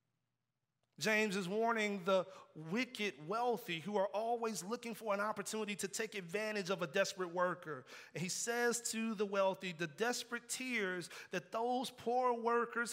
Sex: male